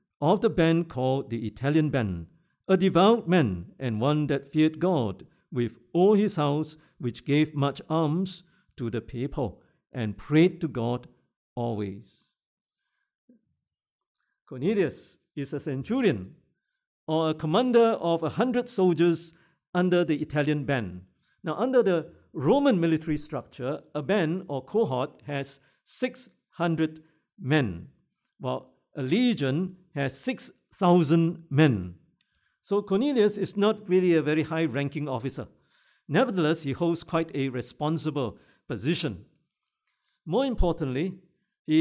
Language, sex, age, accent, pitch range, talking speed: English, male, 50-69, Malaysian, 140-185 Hz, 120 wpm